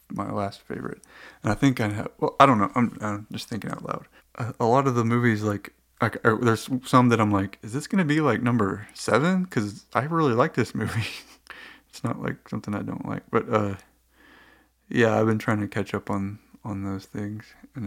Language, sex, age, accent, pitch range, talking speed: English, male, 20-39, American, 100-120 Hz, 215 wpm